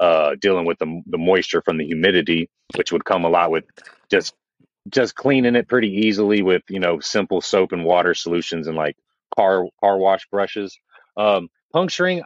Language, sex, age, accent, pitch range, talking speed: English, male, 30-49, American, 95-120 Hz, 180 wpm